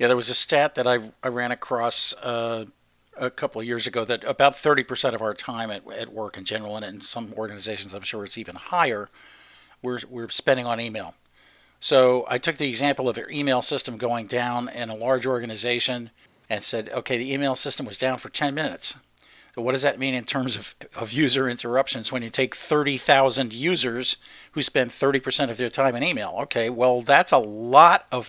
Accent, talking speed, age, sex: American, 205 wpm, 50-69, male